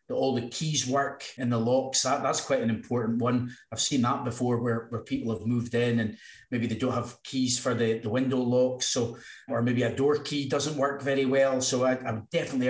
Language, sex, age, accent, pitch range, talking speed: English, male, 30-49, British, 120-140 Hz, 235 wpm